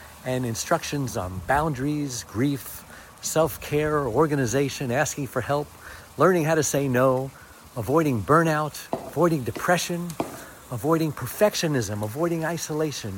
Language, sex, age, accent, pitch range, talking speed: English, male, 60-79, American, 115-145 Hz, 105 wpm